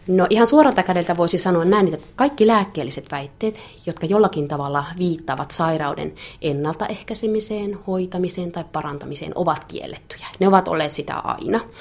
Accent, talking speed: native, 135 wpm